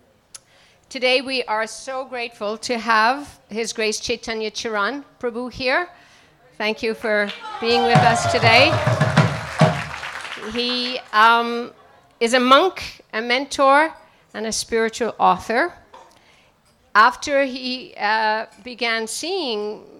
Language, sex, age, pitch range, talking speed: English, female, 50-69, 205-255 Hz, 110 wpm